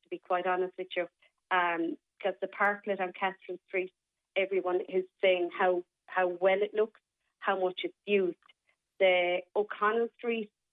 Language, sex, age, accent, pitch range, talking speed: English, female, 30-49, Irish, 180-210 Hz, 155 wpm